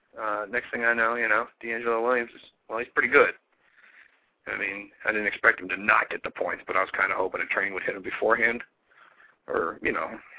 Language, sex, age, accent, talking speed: English, male, 40-59, American, 230 wpm